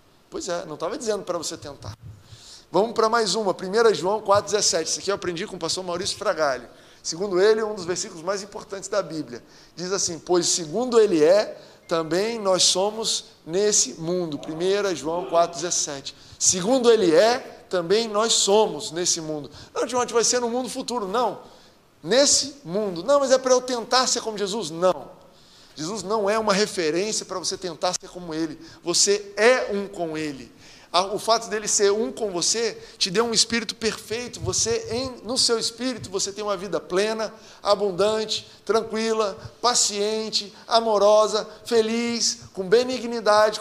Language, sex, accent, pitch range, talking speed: Portuguese, male, Brazilian, 180-230 Hz, 165 wpm